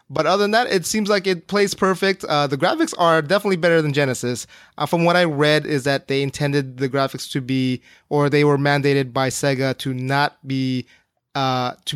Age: 20-39